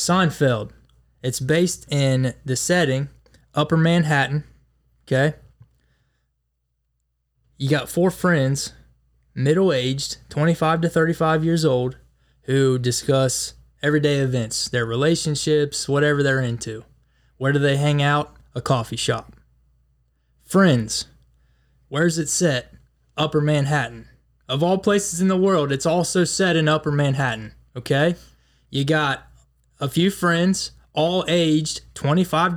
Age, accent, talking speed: 20-39, American, 115 wpm